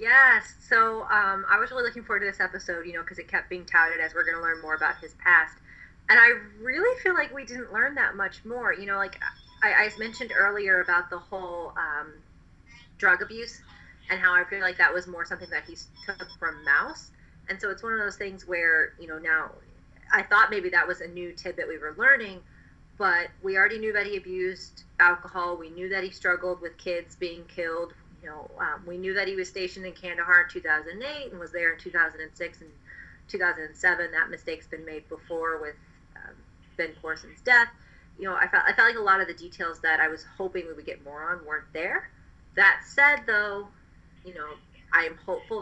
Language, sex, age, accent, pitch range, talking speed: English, female, 30-49, American, 165-200 Hz, 220 wpm